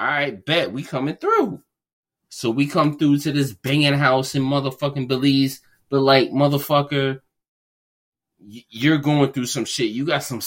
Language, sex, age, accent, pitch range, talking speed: English, male, 20-39, American, 90-135 Hz, 155 wpm